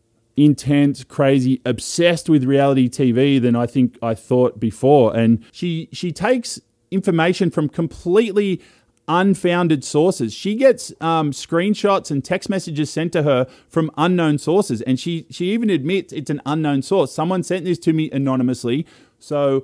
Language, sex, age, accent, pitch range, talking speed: English, male, 20-39, Australian, 135-175 Hz, 155 wpm